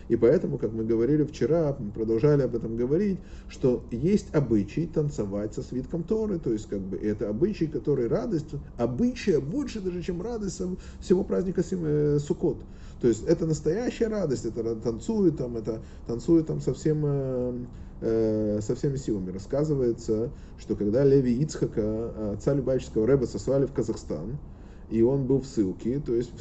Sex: male